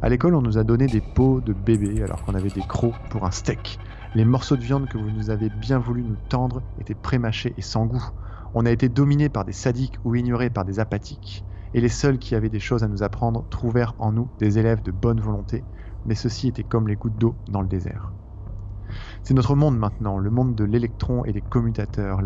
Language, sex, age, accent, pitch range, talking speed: French, male, 20-39, French, 100-125 Hz, 230 wpm